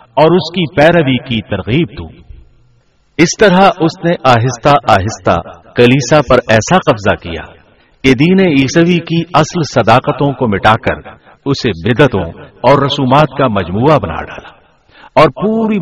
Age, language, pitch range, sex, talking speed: 60-79, Urdu, 110-160 Hz, male, 135 wpm